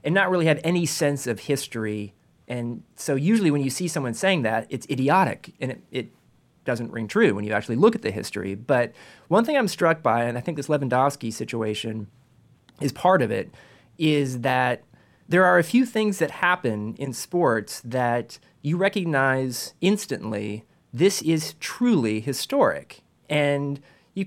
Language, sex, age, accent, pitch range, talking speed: English, male, 30-49, American, 120-170 Hz, 170 wpm